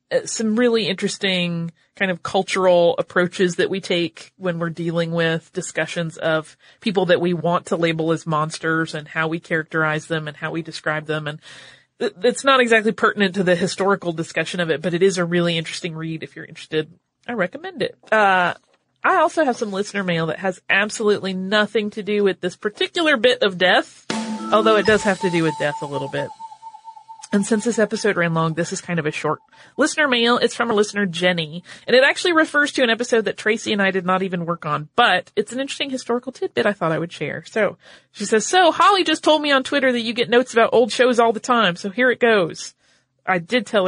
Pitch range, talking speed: 170-235 Hz, 220 wpm